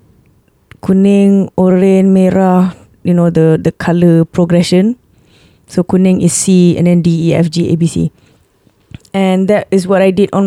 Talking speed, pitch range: 165 wpm, 170-200 Hz